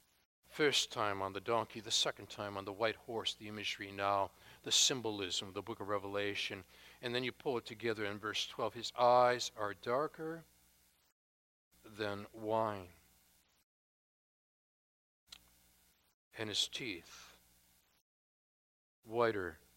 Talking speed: 125 wpm